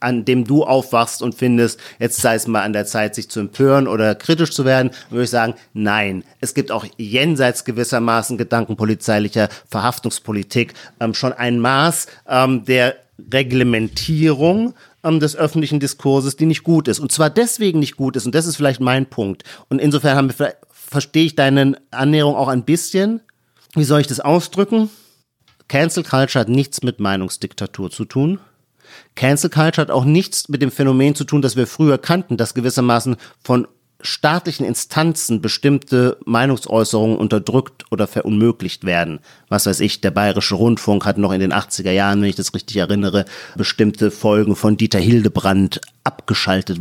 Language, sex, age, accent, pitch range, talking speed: German, male, 40-59, German, 110-145 Hz, 165 wpm